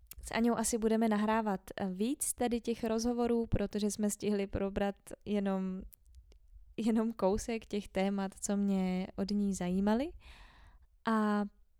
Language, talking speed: Czech, 120 wpm